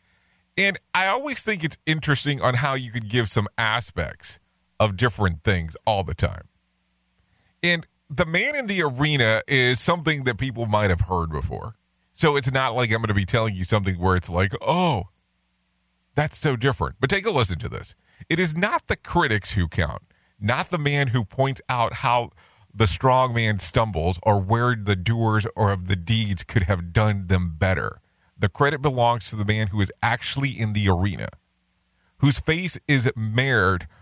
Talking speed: 180 wpm